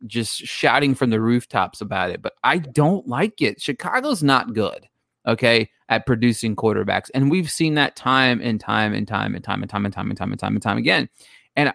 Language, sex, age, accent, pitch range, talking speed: English, male, 30-49, American, 110-135 Hz, 215 wpm